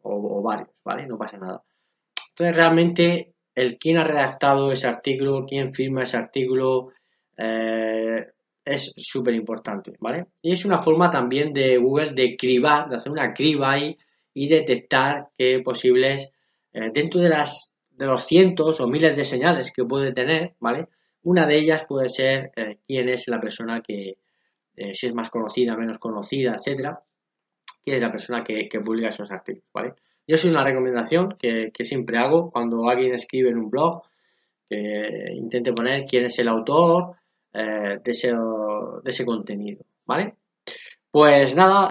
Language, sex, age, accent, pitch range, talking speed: Spanish, male, 20-39, Spanish, 120-150 Hz, 165 wpm